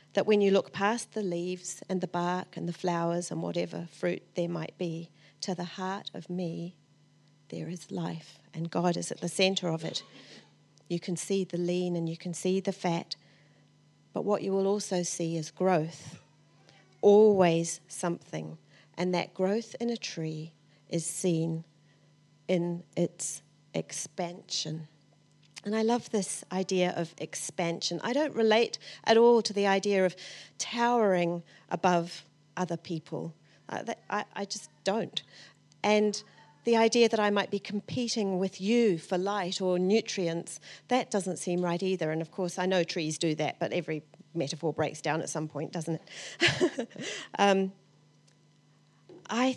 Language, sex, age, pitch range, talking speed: English, female, 40-59, 160-195 Hz, 160 wpm